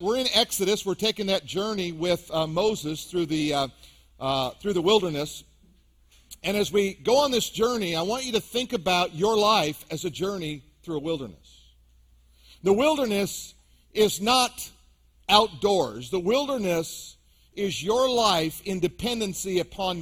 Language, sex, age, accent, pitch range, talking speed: English, male, 50-69, American, 145-215 Hz, 155 wpm